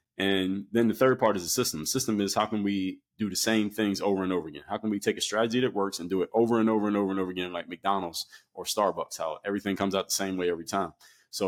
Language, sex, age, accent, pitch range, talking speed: English, male, 20-39, American, 90-105 Hz, 285 wpm